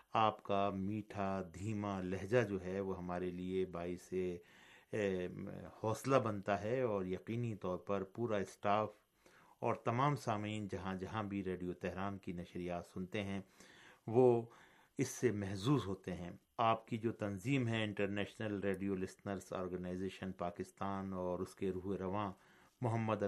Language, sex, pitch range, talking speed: Urdu, male, 95-105 Hz, 140 wpm